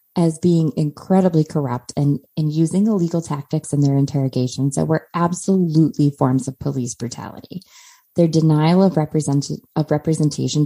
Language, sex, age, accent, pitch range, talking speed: English, female, 20-39, American, 140-175 Hz, 140 wpm